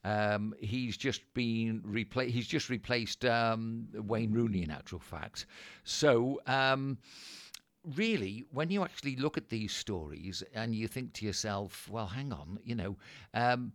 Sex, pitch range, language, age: male, 105-135 Hz, English, 50-69